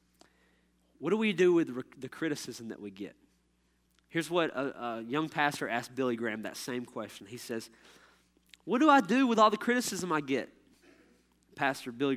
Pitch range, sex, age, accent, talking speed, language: 110-185 Hz, male, 30-49, American, 180 wpm, English